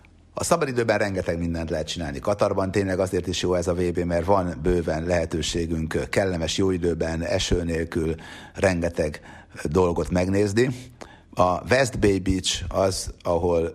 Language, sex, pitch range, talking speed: Hungarian, male, 85-95 Hz, 140 wpm